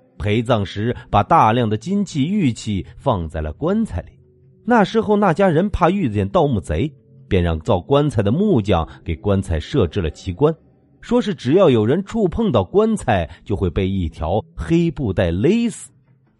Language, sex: Chinese, male